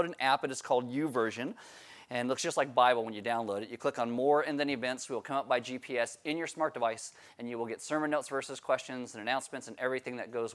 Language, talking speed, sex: English, 260 wpm, male